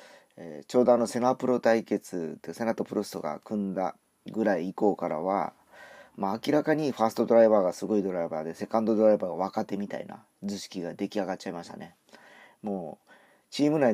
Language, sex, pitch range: Japanese, male, 95-120 Hz